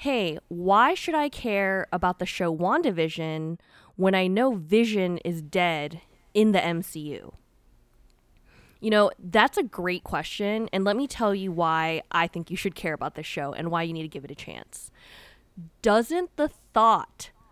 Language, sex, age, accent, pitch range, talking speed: English, female, 10-29, American, 170-215 Hz, 170 wpm